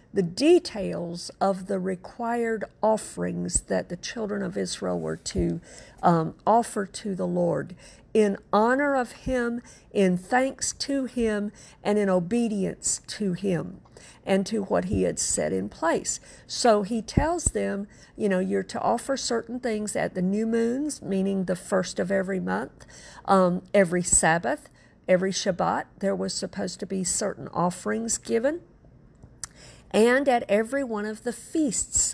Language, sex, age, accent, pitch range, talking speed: English, female, 50-69, American, 185-225 Hz, 150 wpm